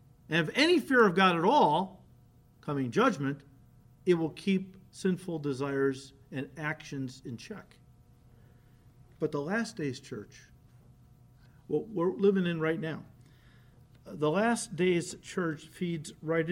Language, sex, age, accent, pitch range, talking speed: English, male, 50-69, American, 135-210 Hz, 130 wpm